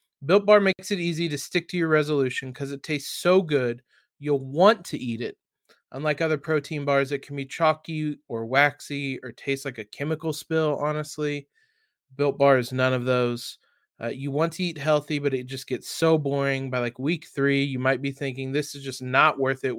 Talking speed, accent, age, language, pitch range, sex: 210 wpm, American, 20-39, English, 135-170 Hz, male